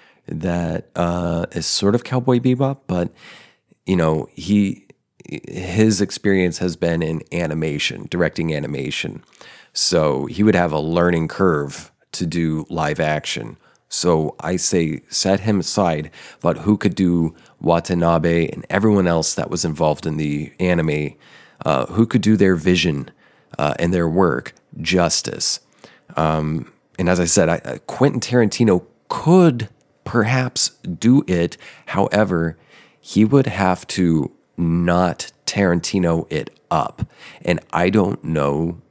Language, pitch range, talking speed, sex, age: English, 80-100 Hz, 135 wpm, male, 30-49